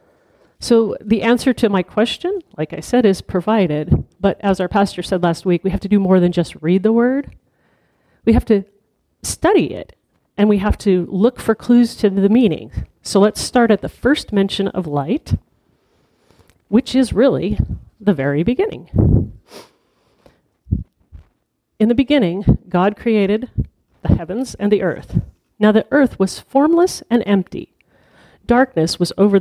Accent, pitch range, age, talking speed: American, 175-225 Hz, 40-59, 160 wpm